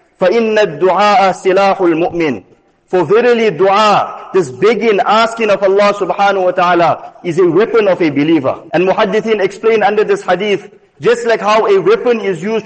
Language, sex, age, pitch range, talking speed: English, male, 50-69, 195-250 Hz, 160 wpm